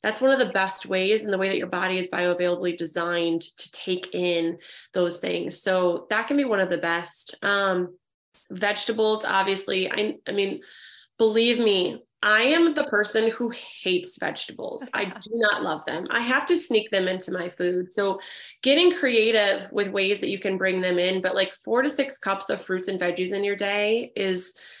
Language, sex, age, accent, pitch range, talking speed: English, female, 20-39, American, 180-215 Hz, 195 wpm